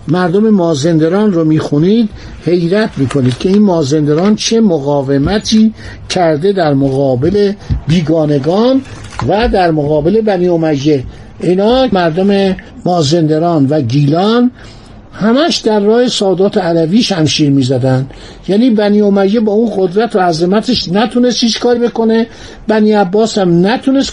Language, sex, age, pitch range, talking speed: Persian, male, 60-79, 155-215 Hz, 115 wpm